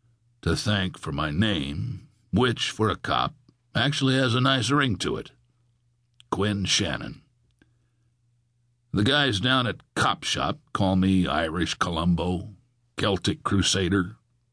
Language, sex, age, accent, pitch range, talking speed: English, male, 60-79, American, 95-120 Hz, 125 wpm